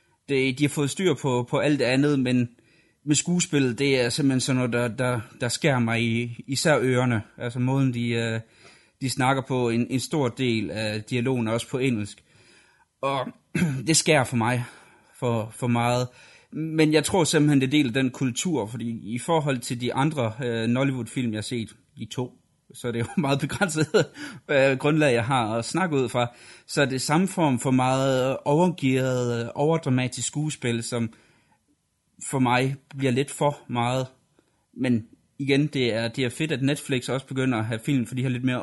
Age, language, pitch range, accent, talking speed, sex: 30-49, Danish, 120-140 Hz, native, 175 wpm, male